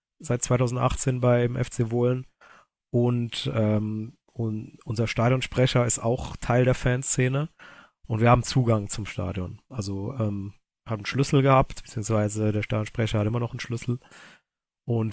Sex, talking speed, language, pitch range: male, 145 wpm, German, 110-125 Hz